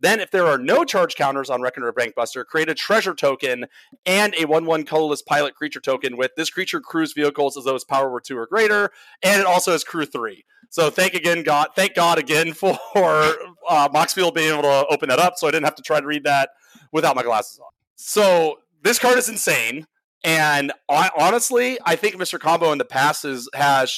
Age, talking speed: 30-49, 220 wpm